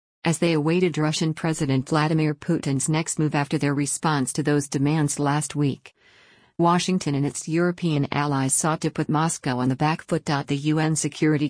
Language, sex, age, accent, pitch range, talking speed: English, female, 50-69, American, 140-165 Hz, 170 wpm